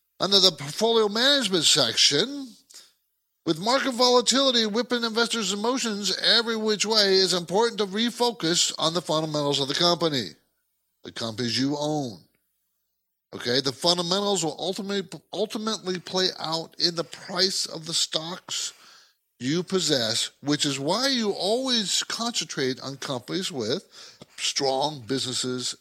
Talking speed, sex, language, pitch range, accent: 130 wpm, male, English, 155-230 Hz, American